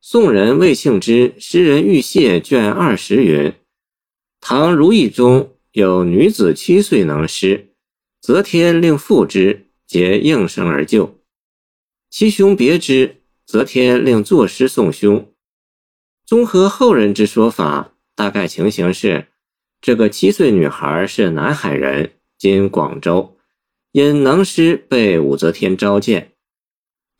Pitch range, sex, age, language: 100-165 Hz, male, 50-69, Chinese